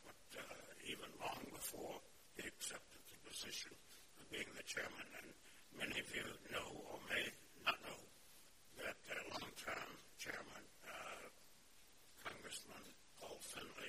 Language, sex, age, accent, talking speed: English, male, 60-79, American, 125 wpm